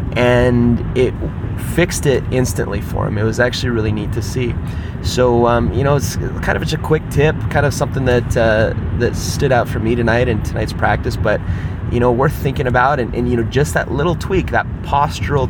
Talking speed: 215 wpm